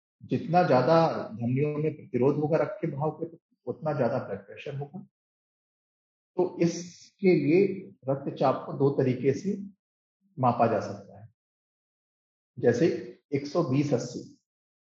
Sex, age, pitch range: male, 40-59, 130-175 Hz